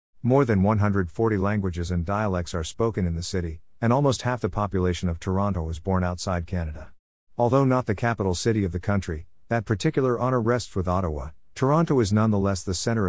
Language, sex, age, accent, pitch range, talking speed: English, male, 50-69, American, 90-115 Hz, 190 wpm